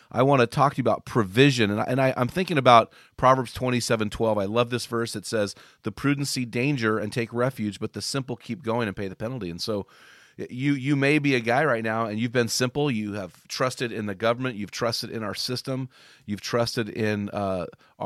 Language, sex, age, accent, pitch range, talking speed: English, male, 40-59, American, 105-125 Hz, 230 wpm